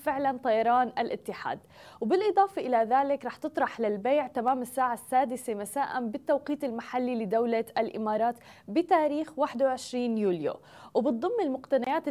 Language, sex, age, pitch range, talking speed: Arabic, female, 20-39, 230-280 Hz, 110 wpm